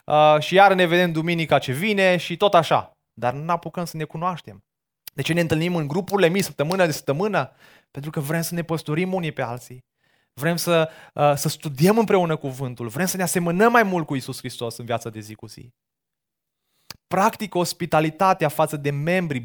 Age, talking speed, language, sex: 20-39, 190 wpm, Romanian, male